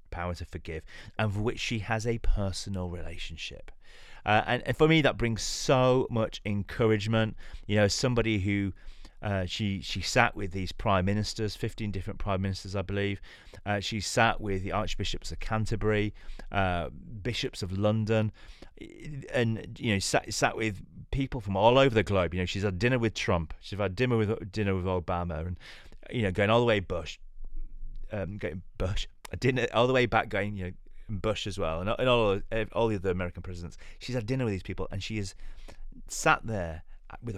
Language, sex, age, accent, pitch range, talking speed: English, male, 30-49, British, 90-110 Hz, 185 wpm